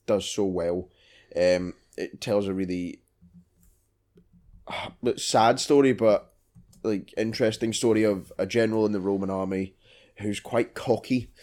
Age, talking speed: 10-29, 125 wpm